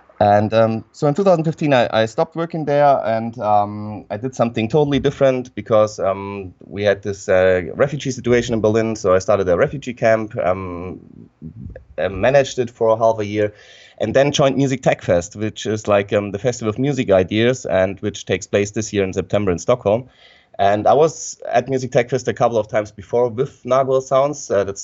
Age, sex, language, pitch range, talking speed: 30-49, male, English, 100-125 Hz, 200 wpm